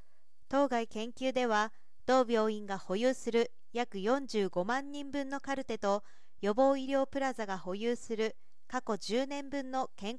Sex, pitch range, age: female, 215-270 Hz, 40-59